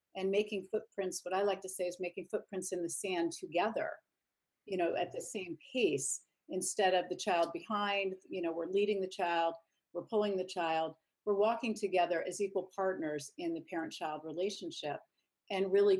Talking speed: 180 wpm